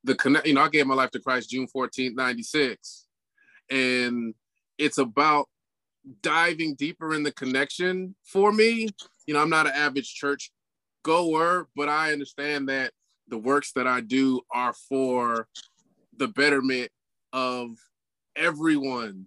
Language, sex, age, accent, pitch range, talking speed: English, male, 20-39, American, 130-160 Hz, 140 wpm